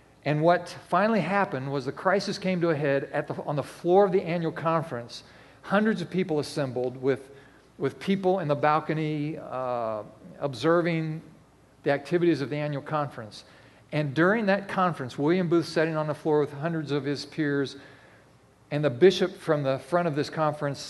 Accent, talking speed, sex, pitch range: American, 180 wpm, male, 145-180 Hz